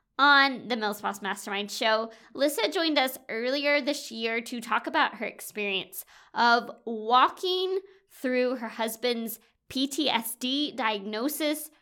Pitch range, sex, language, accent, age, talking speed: 220-290 Hz, female, English, American, 20-39, 120 wpm